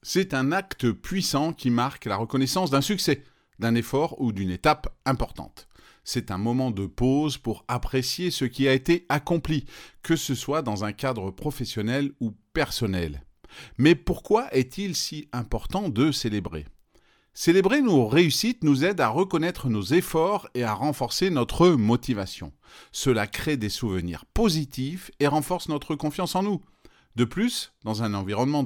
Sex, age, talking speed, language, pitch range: male, 40-59, 155 wpm, French, 105-155 Hz